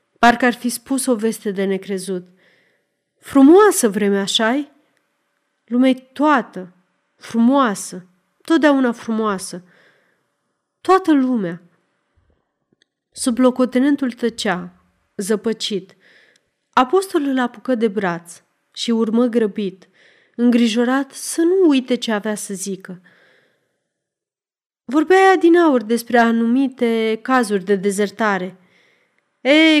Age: 30-49